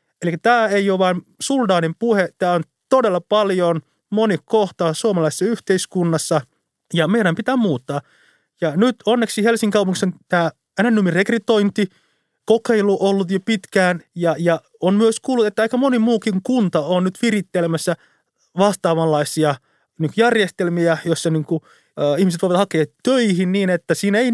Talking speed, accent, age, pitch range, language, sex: 140 wpm, native, 30-49, 160-220 Hz, Finnish, male